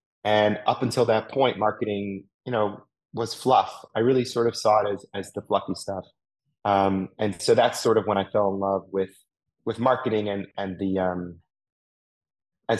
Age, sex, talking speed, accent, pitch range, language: 30-49, male, 190 wpm, American, 100-115 Hz, English